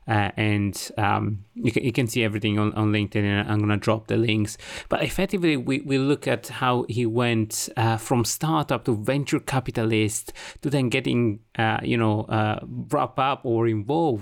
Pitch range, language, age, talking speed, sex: 110-125 Hz, English, 30-49, 190 wpm, male